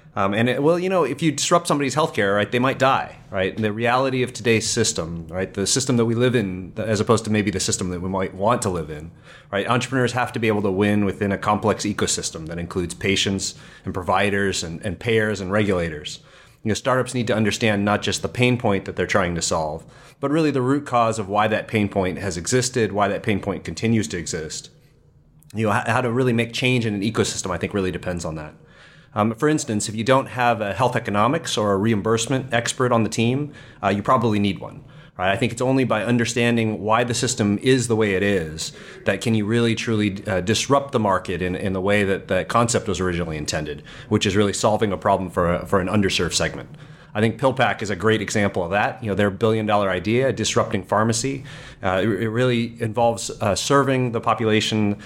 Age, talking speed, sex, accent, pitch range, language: 30-49, 225 wpm, male, American, 100-125 Hz, English